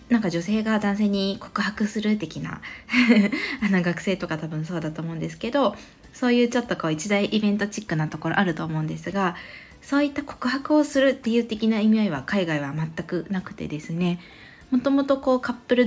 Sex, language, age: female, Japanese, 20-39